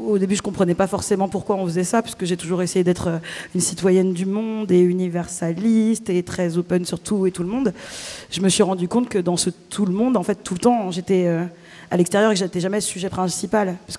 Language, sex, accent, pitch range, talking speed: French, female, French, 170-195 Hz, 245 wpm